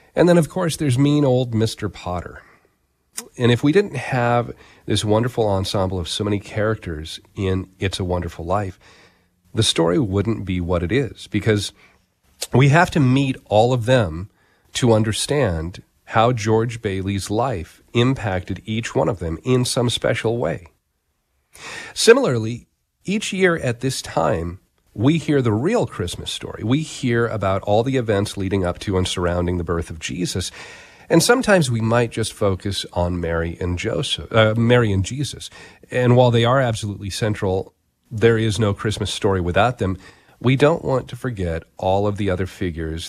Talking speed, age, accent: 165 wpm, 40-59, American